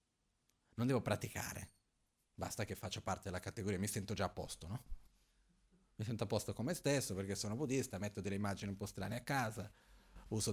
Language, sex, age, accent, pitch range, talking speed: Italian, male, 30-49, native, 95-120 Hz, 195 wpm